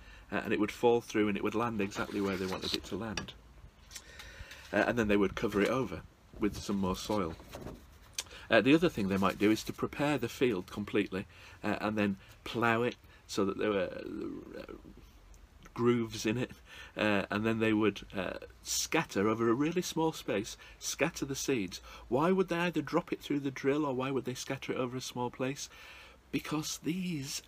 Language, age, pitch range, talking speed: English, 40-59, 90-125 Hz, 200 wpm